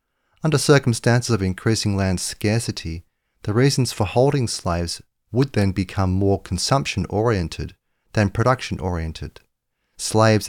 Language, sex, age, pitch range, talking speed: English, male, 40-59, 95-120 Hz, 110 wpm